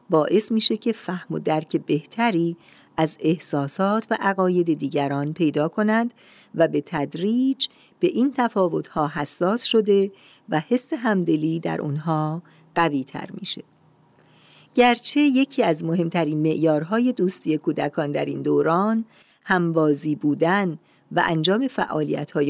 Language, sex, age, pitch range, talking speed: Persian, female, 50-69, 155-220 Hz, 120 wpm